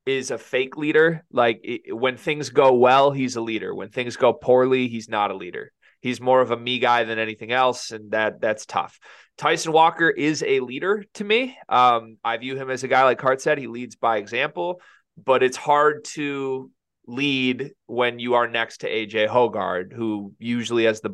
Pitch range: 115-165 Hz